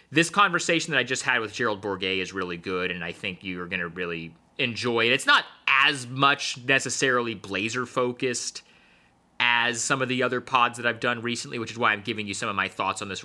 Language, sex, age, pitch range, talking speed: English, male, 30-49, 100-130 Hz, 220 wpm